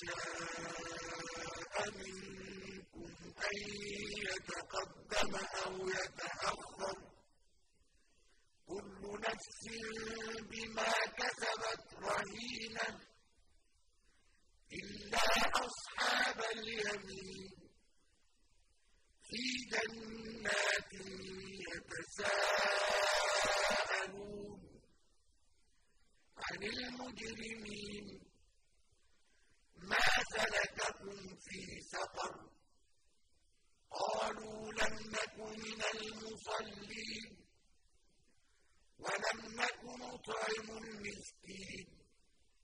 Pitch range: 190-220 Hz